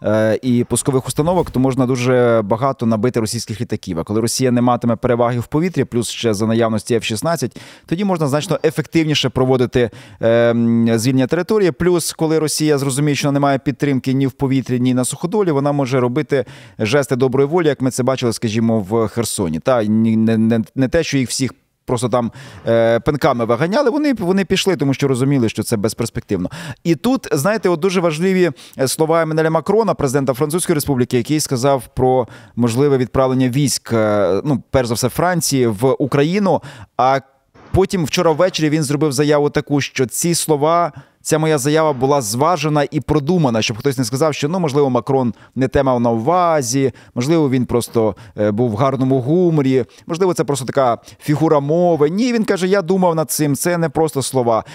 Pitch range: 120-160 Hz